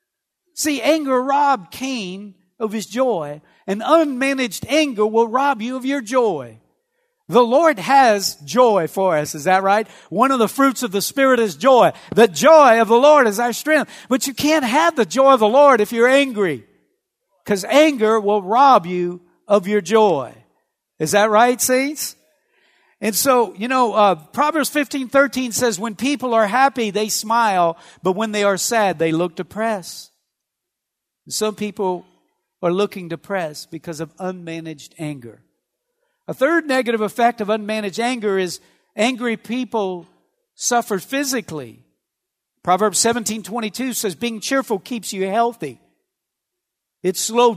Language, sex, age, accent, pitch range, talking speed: English, male, 50-69, American, 205-270 Hz, 150 wpm